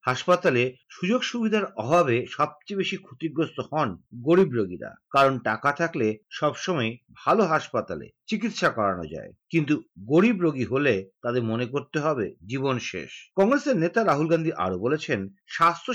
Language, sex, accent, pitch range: Bengali, male, native, 165-200 Hz